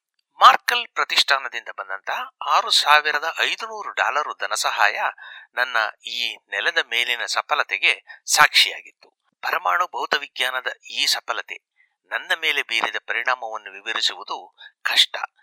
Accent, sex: native, male